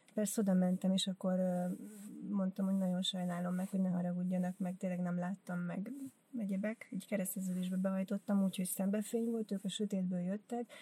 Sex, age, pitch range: female, 30-49, 190-215 Hz